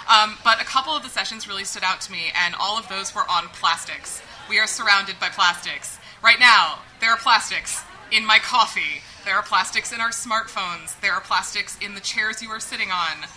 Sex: female